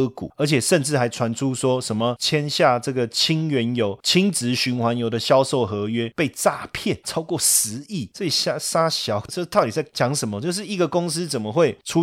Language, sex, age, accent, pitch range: Chinese, male, 30-49, native, 110-150 Hz